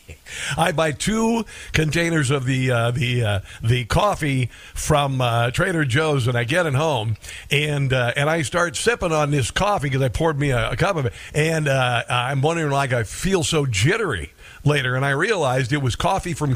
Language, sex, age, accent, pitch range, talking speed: English, male, 50-69, American, 125-165 Hz, 200 wpm